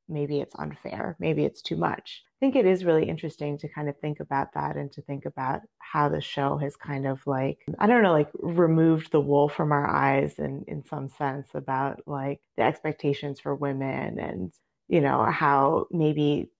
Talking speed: 205 wpm